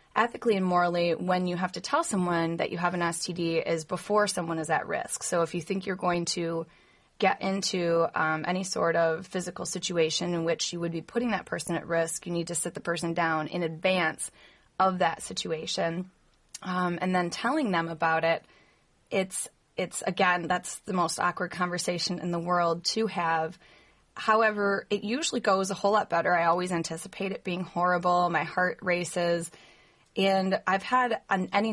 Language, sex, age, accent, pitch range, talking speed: English, female, 20-39, American, 170-190 Hz, 185 wpm